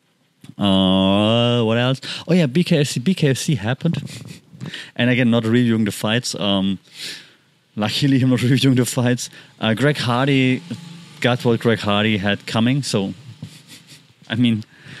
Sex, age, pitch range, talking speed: male, 30-49, 110-140 Hz, 130 wpm